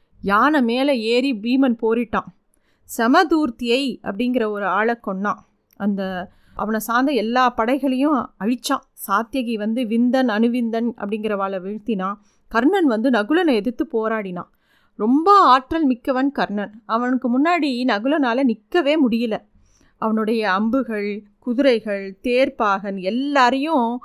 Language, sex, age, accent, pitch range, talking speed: Tamil, female, 30-49, native, 220-275 Hz, 105 wpm